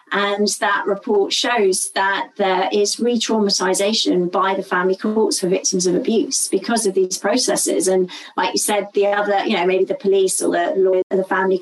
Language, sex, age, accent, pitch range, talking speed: English, female, 30-49, British, 195-240 Hz, 185 wpm